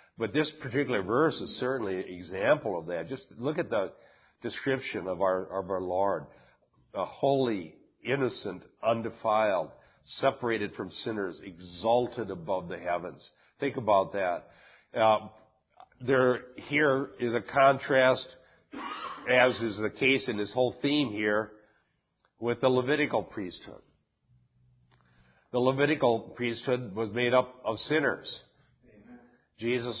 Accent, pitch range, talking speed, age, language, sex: American, 105-125 Hz, 125 wpm, 50-69, English, male